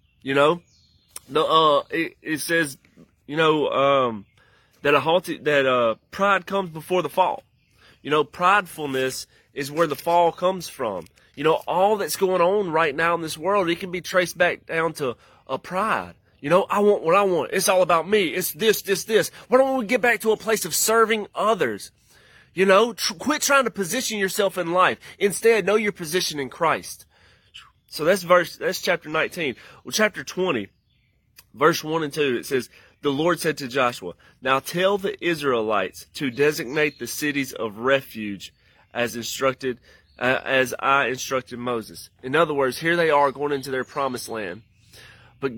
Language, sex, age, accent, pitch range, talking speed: English, male, 30-49, American, 125-180 Hz, 185 wpm